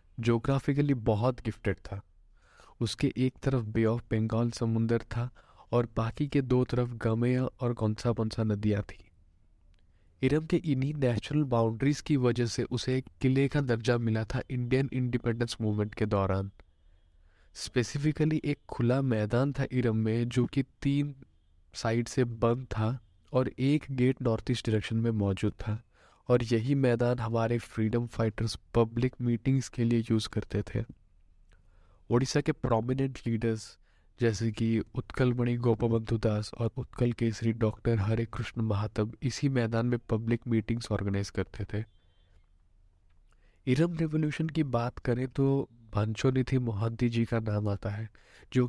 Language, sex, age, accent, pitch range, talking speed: Hindi, male, 20-39, native, 110-130 Hz, 145 wpm